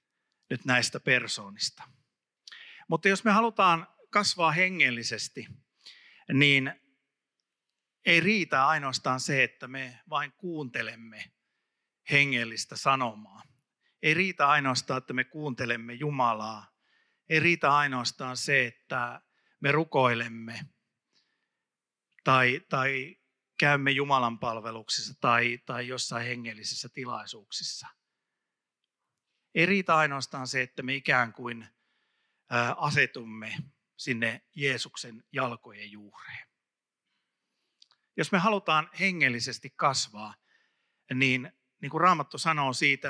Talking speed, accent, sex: 95 wpm, native, male